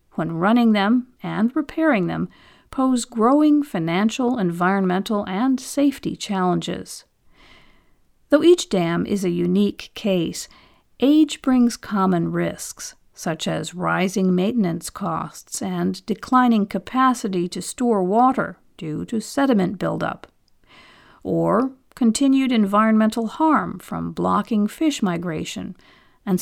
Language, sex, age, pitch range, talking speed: English, female, 50-69, 180-250 Hz, 110 wpm